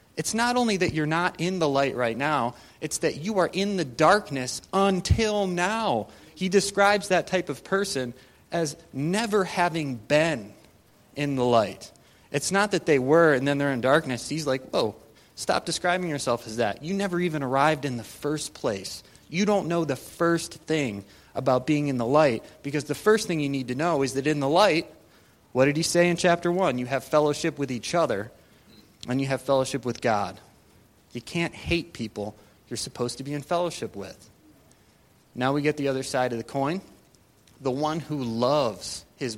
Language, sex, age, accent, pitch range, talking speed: English, male, 30-49, American, 115-165 Hz, 195 wpm